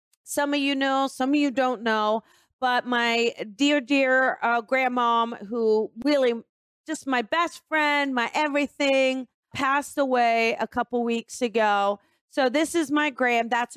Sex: female